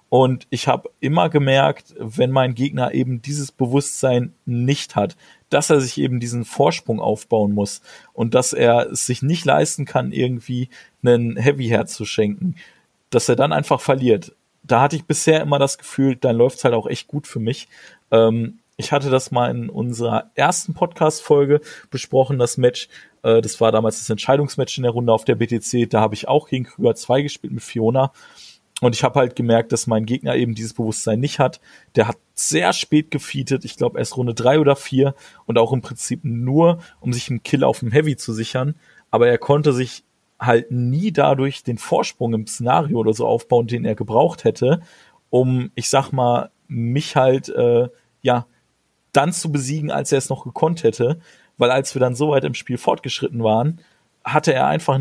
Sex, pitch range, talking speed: male, 120-145 Hz, 190 wpm